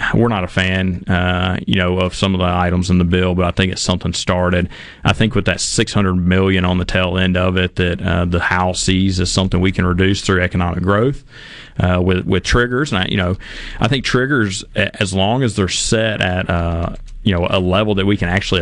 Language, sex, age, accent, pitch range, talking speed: English, male, 30-49, American, 90-100 Hz, 235 wpm